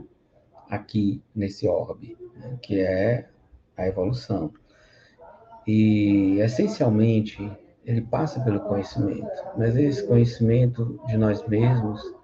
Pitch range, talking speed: 105-135 Hz, 100 wpm